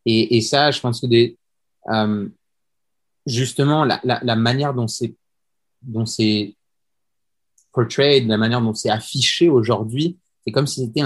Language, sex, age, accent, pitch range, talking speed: English, male, 30-49, French, 110-130 Hz, 150 wpm